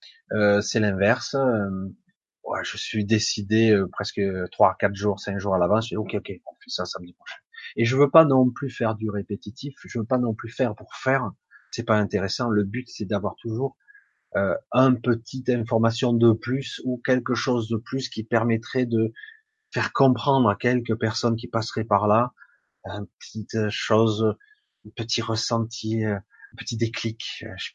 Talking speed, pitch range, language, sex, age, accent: 180 wpm, 100-125 Hz, French, male, 30-49, French